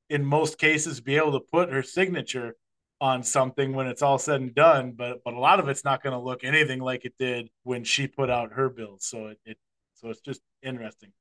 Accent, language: American, English